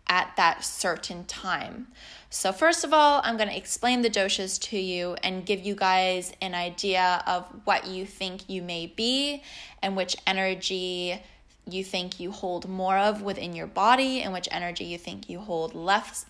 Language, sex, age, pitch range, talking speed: English, female, 10-29, 180-210 Hz, 180 wpm